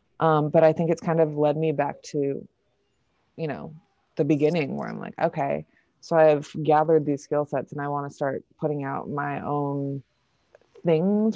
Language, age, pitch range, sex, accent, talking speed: English, 20-39, 140-160 Hz, female, American, 185 wpm